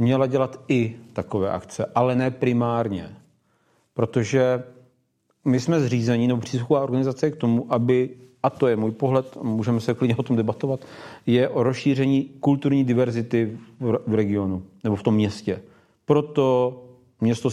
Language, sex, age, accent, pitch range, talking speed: Czech, male, 40-59, native, 110-130 Hz, 145 wpm